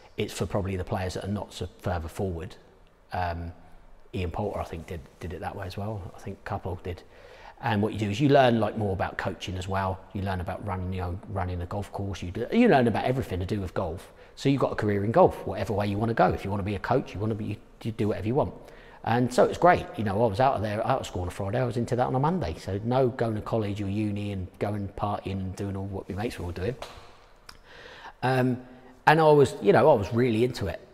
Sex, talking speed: male, 280 wpm